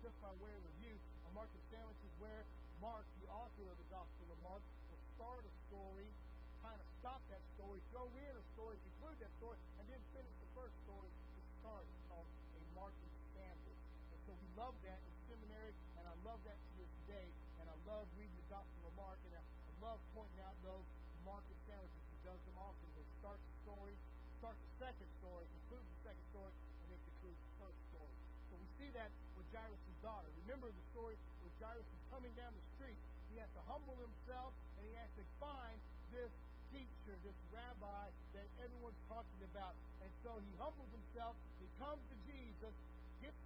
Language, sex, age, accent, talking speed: English, male, 50-69, American, 195 wpm